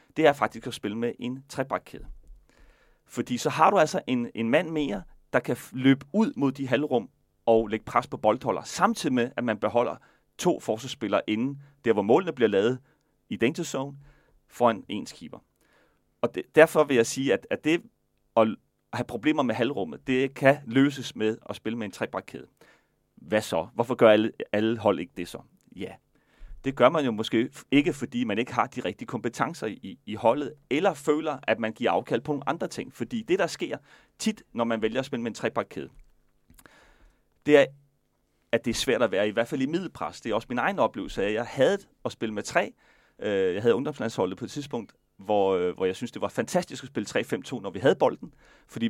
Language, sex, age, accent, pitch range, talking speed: Danish, male, 30-49, native, 110-145 Hz, 205 wpm